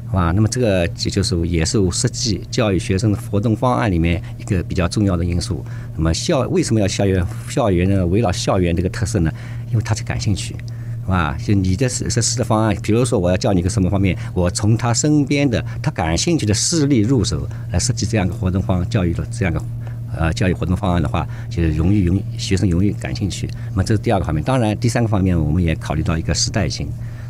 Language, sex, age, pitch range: English, male, 50-69, 95-120 Hz